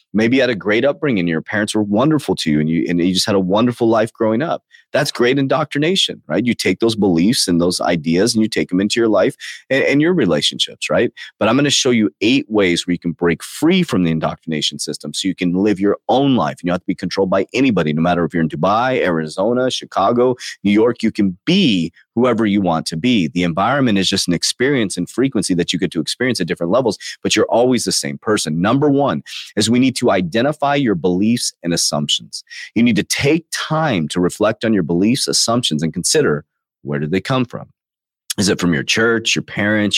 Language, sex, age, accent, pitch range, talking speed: English, male, 30-49, American, 85-120 Hz, 235 wpm